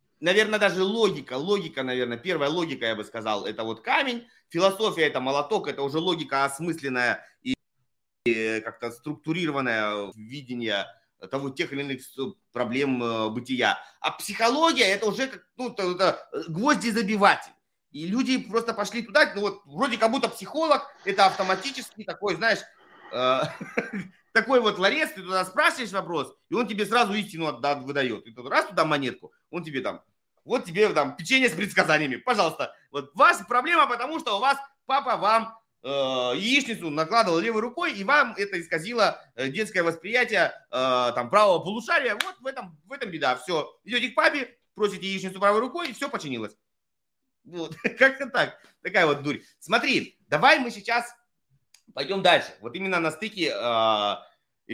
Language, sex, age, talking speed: Russian, male, 30-49, 150 wpm